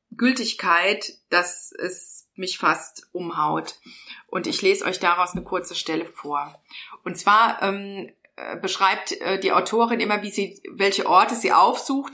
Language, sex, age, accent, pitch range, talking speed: German, female, 30-49, German, 175-220 Hz, 140 wpm